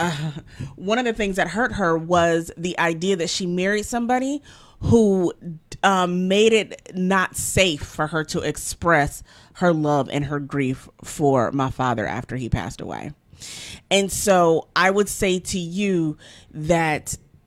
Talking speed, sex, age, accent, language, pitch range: 155 wpm, female, 30-49, American, English, 155-185 Hz